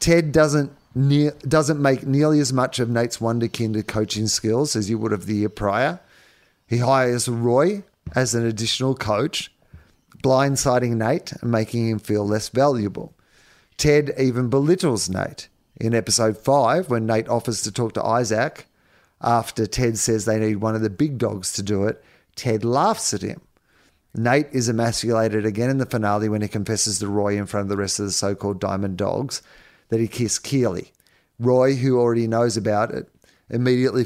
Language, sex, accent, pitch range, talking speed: English, male, Australian, 105-125 Hz, 175 wpm